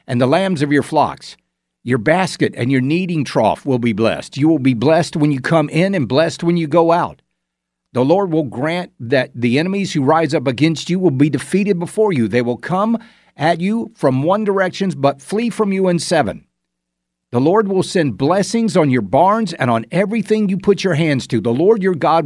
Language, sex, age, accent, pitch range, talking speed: English, male, 50-69, American, 120-180 Hz, 215 wpm